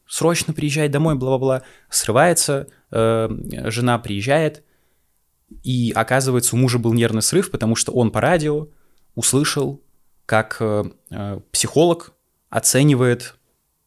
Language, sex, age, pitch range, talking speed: Russian, male, 20-39, 105-130 Hz, 110 wpm